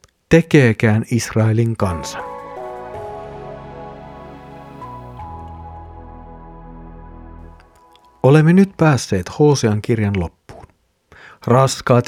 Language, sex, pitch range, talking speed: Finnish, male, 110-140 Hz, 50 wpm